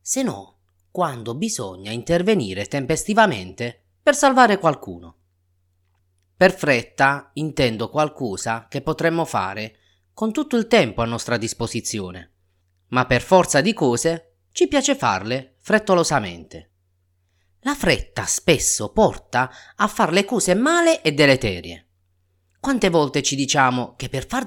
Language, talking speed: Italian, 125 wpm